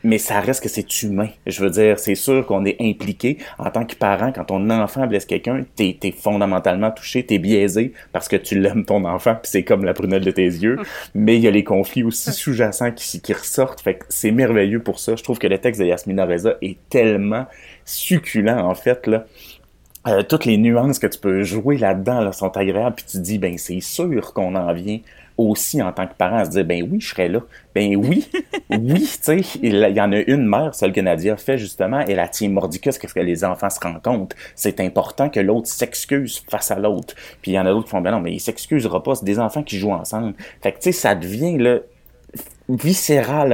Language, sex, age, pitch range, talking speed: French, male, 30-49, 95-120 Hz, 235 wpm